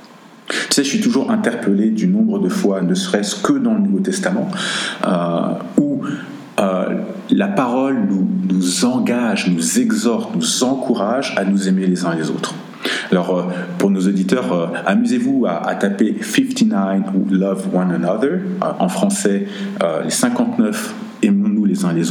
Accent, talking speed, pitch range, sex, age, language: French, 175 wpm, 190-225 Hz, male, 50-69, French